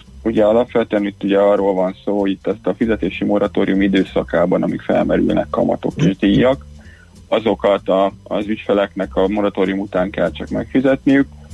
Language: Hungarian